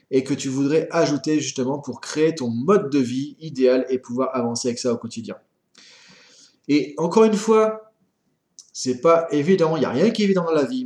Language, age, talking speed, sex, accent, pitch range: French, 30-49, 205 wpm, male, French, 130-185 Hz